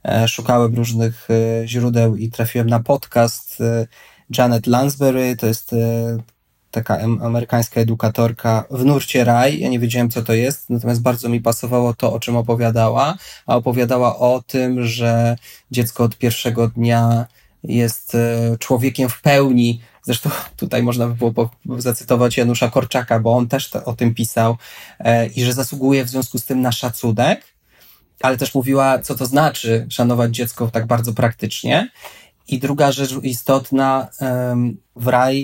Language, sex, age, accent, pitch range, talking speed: Polish, male, 20-39, native, 115-130 Hz, 140 wpm